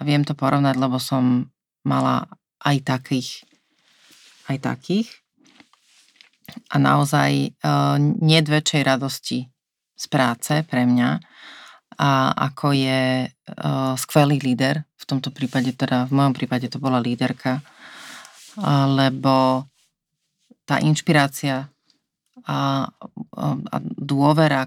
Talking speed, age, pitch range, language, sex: 100 wpm, 30-49, 130-145 Hz, Slovak, female